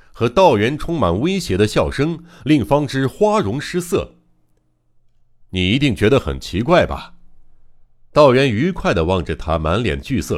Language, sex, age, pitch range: Chinese, male, 60-79, 75-110 Hz